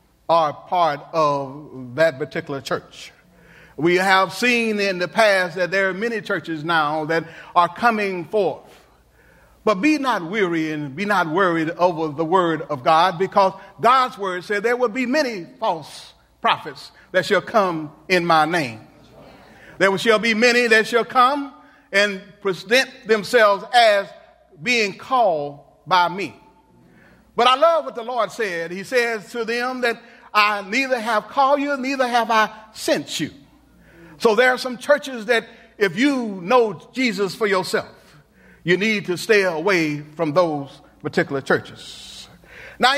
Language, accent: English, American